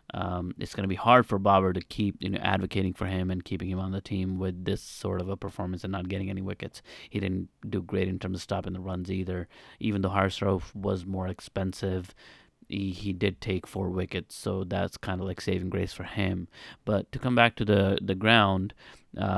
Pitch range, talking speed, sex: 95-100 Hz, 225 wpm, male